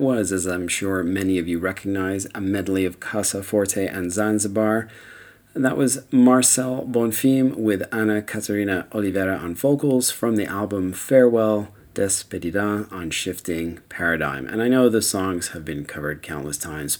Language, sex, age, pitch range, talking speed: English, male, 40-59, 85-115 Hz, 155 wpm